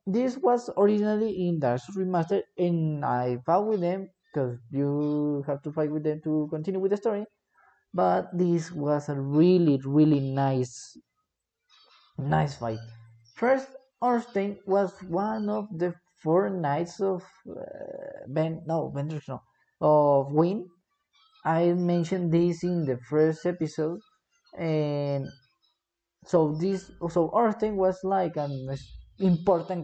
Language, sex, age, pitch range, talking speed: English, male, 30-49, 150-210 Hz, 130 wpm